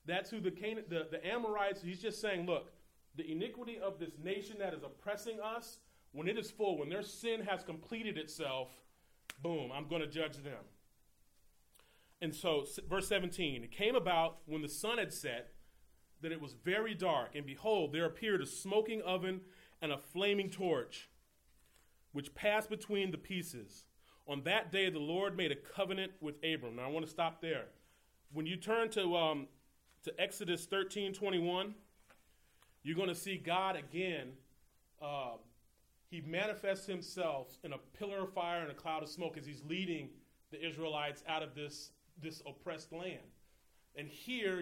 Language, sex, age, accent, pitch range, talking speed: English, male, 30-49, American, 150-195 Hz, 170 wpm